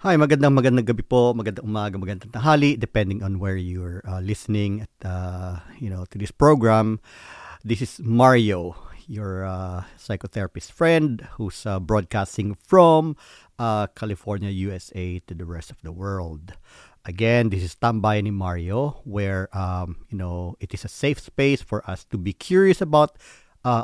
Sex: male